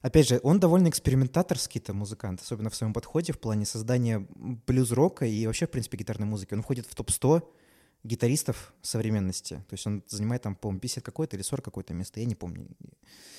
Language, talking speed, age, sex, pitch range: Russian, 185 wpm, 20-39, male, 110-135 Hz